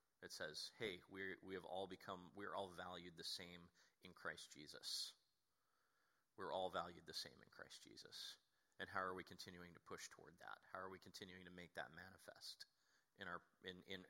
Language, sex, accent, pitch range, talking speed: English, male, American, 100-140 Hz, 190 wpm